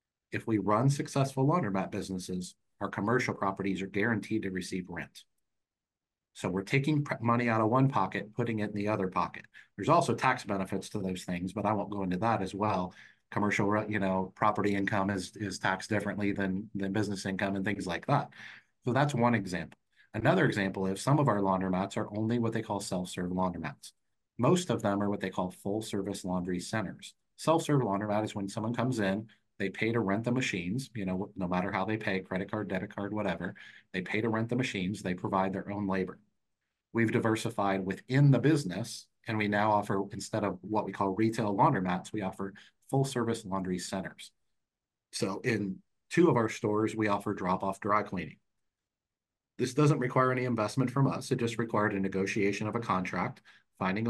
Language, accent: English, American